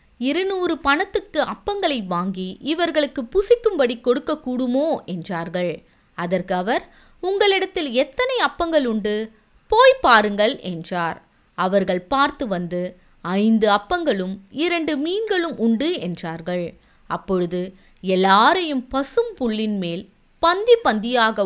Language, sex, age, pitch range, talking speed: Tamil, female, 20-39, 185-300 Hz, 90 wpm